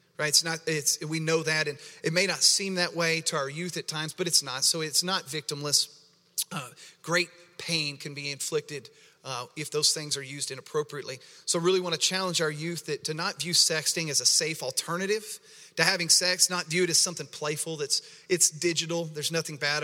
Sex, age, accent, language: male, 40-59, American, English